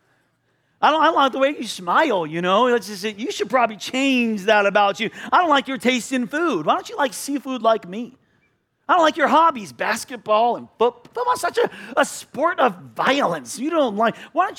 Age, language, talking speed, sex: 40-59, English, 220 wpm, male